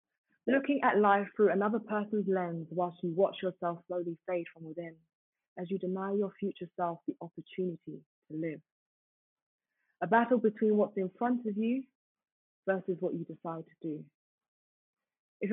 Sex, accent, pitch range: female, British, 175-215 Hz